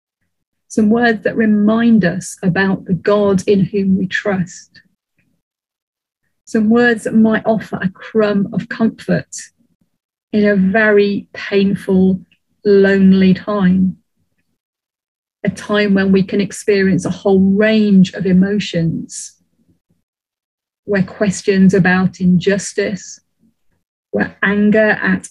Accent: British